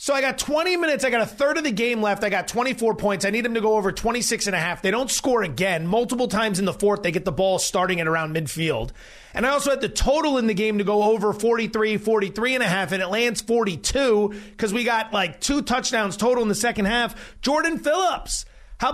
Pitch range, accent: 215-265 Hz, American